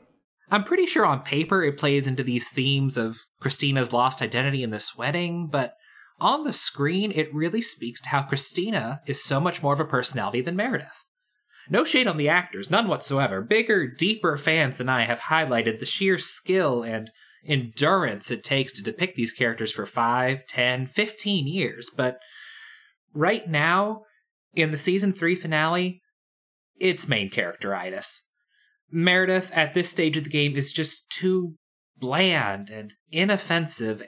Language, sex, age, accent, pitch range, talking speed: English, male, 20-39, American, 130-180 Hz, 160 wpm